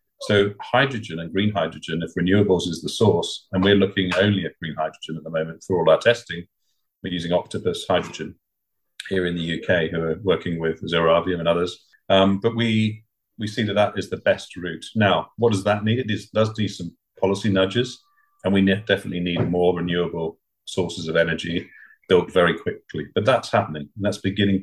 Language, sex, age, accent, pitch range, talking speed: English, male, 40-59, British, 85-100 Hz, 190 wpm